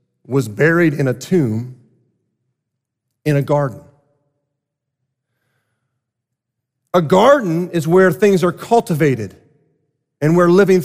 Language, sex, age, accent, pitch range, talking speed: English, male, 40-59, American, 125-145 Hz, 100 wpm